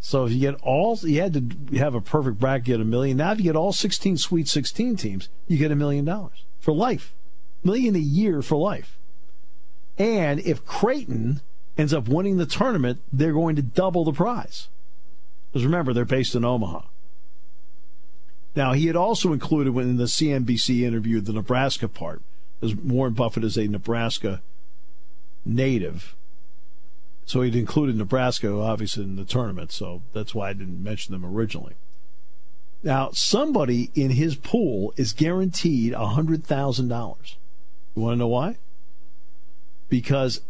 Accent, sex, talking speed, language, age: American, male, 165 wpm, English, 50-69